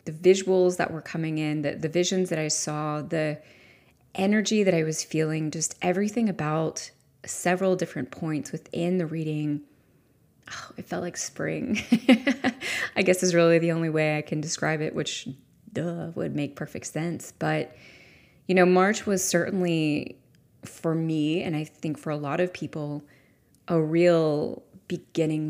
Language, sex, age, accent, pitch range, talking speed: English, female, 20-39, American, 150-175 Hz, 160 wpm